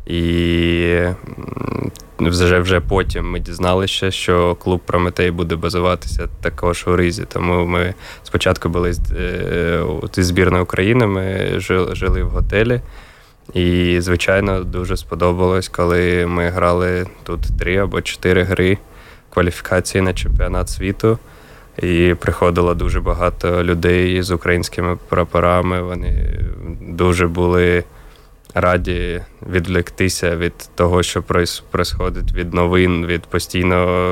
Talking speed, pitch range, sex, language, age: 105 wpm, 85-90 Hz, male, Ukrainian, 20-39